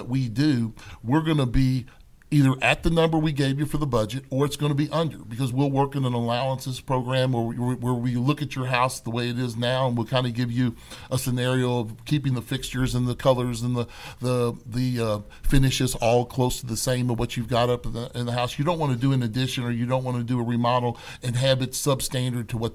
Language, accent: English, American